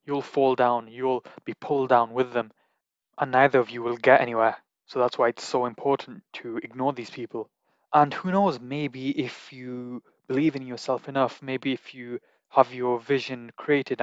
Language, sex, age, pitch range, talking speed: English, male, 20-39, 120-140 Hz, 185 wpm